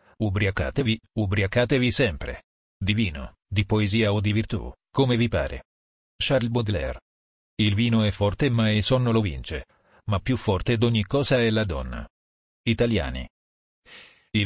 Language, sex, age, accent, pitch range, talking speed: Italian, male, 40-59, native, 80-120 Hz, 140 wpm